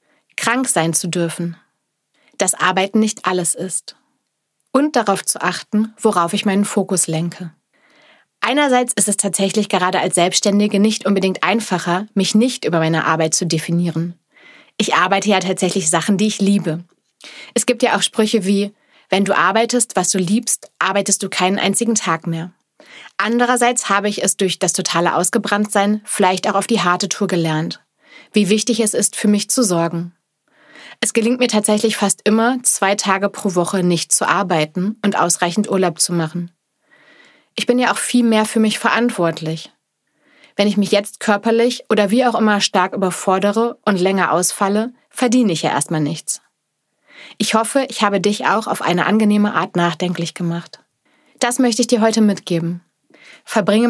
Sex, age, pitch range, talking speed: female, 30-49, 180-225 Hz, 165 wpm